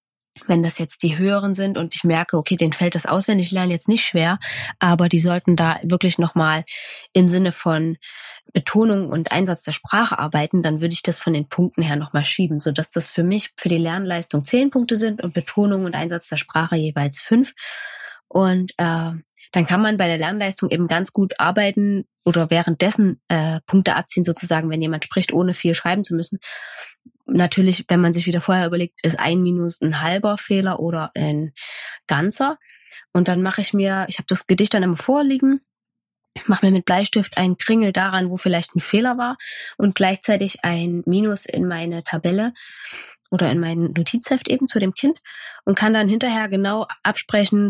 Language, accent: German, German